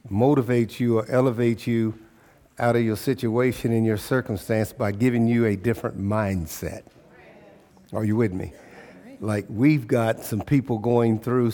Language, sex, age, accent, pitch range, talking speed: English, male, 50-69, American, 105-125 Hz, 150 wpm